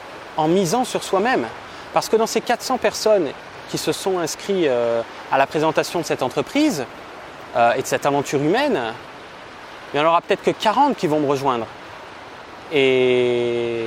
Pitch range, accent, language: 130-175 Hz, French, French